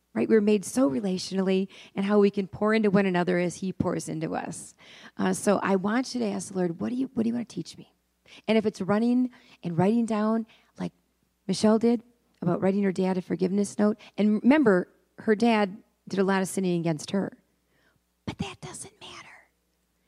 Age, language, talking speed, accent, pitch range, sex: 40-59, English, 210 wpm, American, 165-205 Hz, female